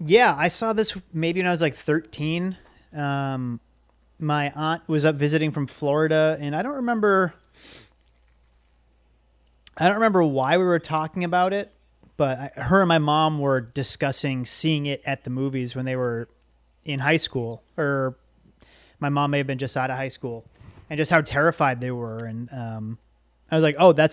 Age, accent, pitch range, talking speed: 30-49, American, 120-155 Hz, 185 wpm